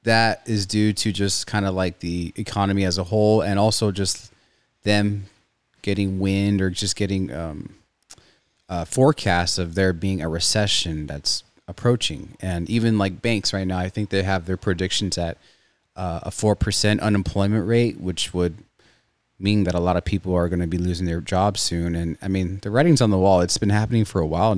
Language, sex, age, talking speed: English, male, 30-49, 195 wpm